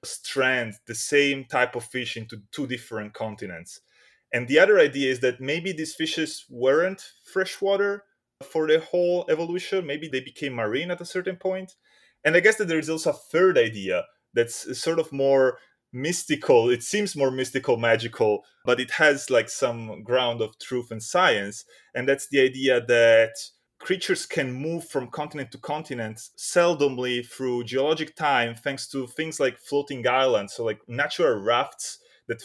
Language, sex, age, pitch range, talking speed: English, male, 30-49, 125-175 Hz, 165 wpm